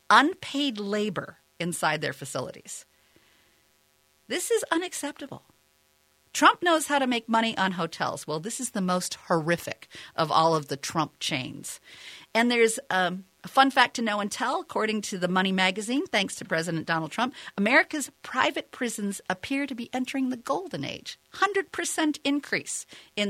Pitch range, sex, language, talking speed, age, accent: 145-240 Hz, female, English, 155 wpm, 50-69, American